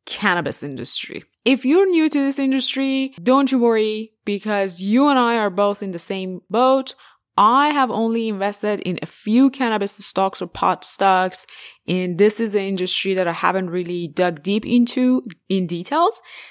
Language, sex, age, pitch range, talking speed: English, female, 20-39, 170-235 Hz, 170 wpm